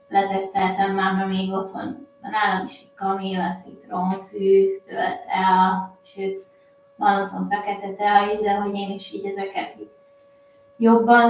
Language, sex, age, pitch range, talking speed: Hungarian, female, 20-39, 195-235 Hz, 135 wpm